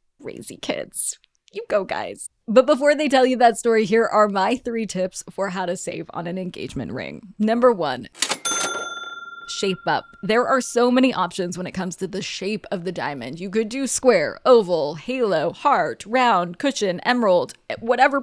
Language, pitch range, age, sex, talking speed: English, 195-260 Hz, 20-39, female, 180 wpm